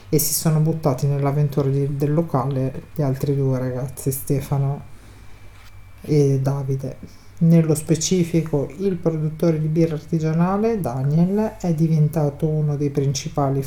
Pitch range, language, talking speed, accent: 135-160 Hz, Italian, 120 wpm, native